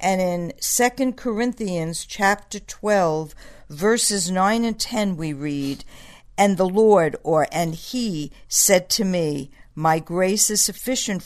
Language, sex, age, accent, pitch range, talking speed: English, female, 60-79, American, 160-210 Hz, 135 wpm